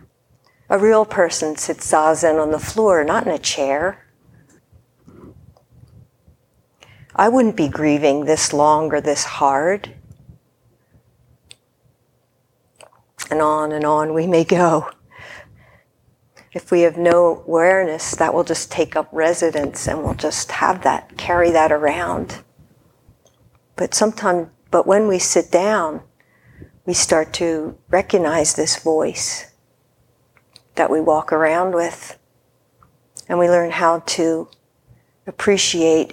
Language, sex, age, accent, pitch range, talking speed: English, female, 50-69, American, 140-175 Hz, 115 wpm